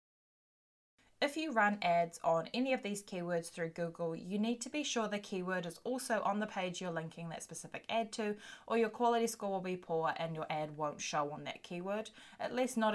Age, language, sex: 20-39, English, female